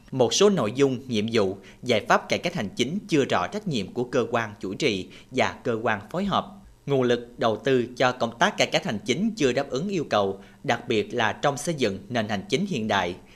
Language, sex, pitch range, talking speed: Vietnamese, male, 110-150 Hz, 240 wpm